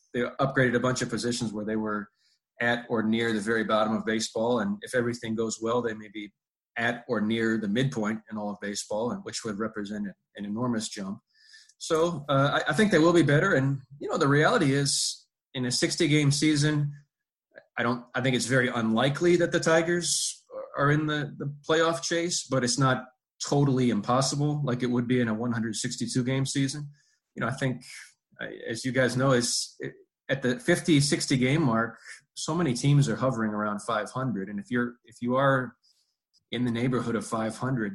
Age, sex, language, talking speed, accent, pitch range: 20-39, male, English, 195 wpm, American, 110-140 Hz